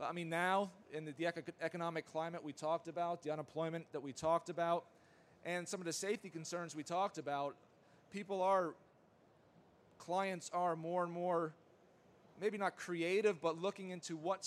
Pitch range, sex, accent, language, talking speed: 155-175 Hz, male, American, English, 165 wpm